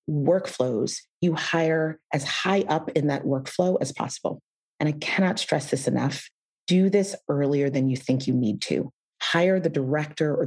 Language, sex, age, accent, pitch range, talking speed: English, female, 30-49, American, 135-175 Hz, 170 wpm